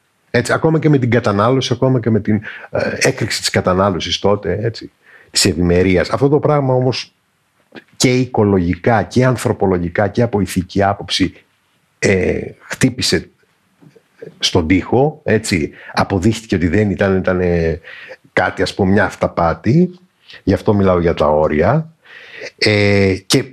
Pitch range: 95-130 Hz